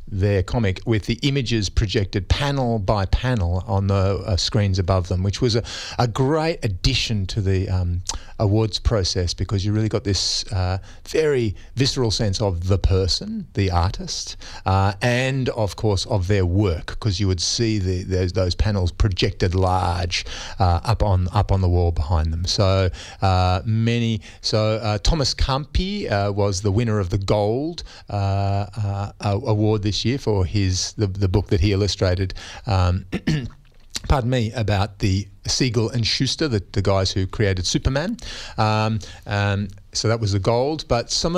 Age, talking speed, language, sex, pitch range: 40-59, 170 wpm, English, male, 95-115 Hz